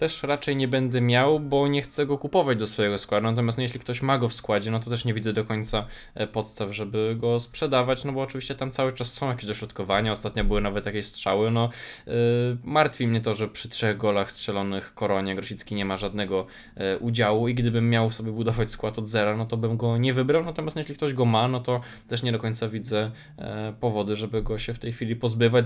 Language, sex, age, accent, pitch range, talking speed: Polish, male, 20-39, native, 105-125 Hz, 225 wpm